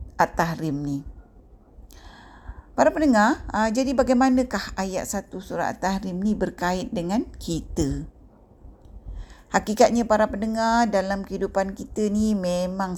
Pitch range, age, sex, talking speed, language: 175-215 Hz, 50-69, female, 105 wpm, Malay